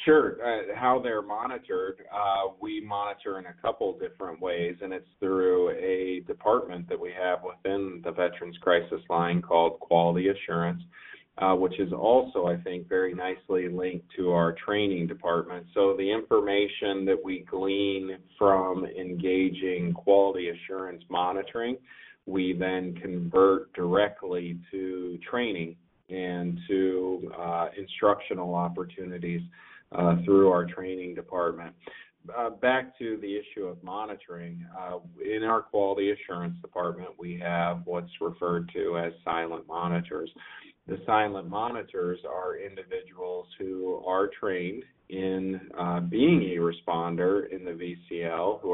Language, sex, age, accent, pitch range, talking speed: English, male, 40-59, American, 85-95 Hz, 130 wpm